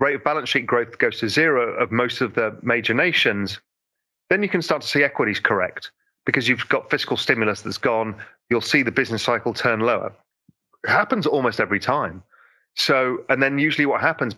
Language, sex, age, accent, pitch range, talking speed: English, male, 30-49, British, 125-165 Hz, 195 wpm